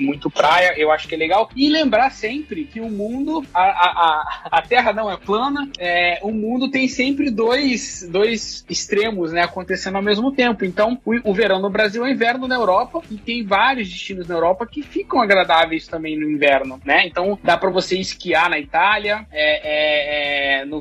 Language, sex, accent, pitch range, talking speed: Portuguese, male, Brazilian, 160-215 Hz, 195 wpm